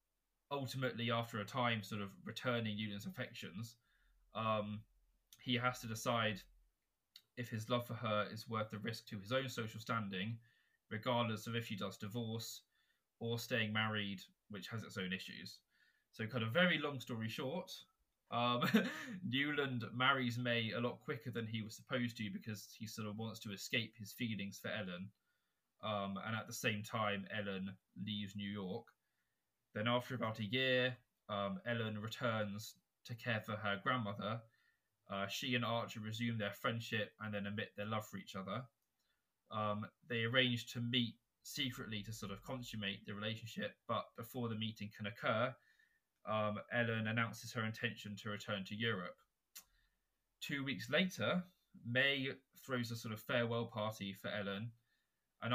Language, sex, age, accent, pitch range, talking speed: English, male, 20-39, British, 105-120 Hz, 160 wpm